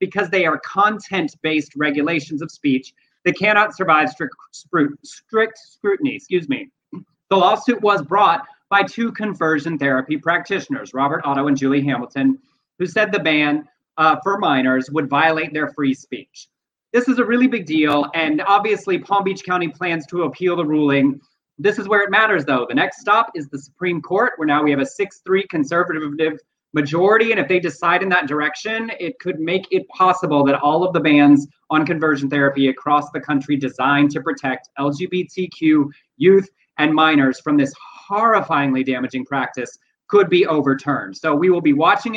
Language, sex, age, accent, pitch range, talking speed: English, male, 30-49, American, 145-205 Hz, 175 wpm